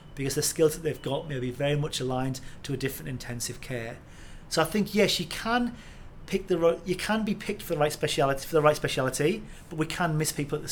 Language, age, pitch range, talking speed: English, 40-59, 140-170 Hz, 245 wpm